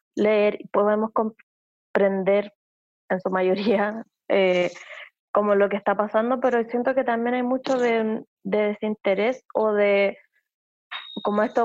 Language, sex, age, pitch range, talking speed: Spanish, female, 20-39, 205-235 Hz, 135 wpm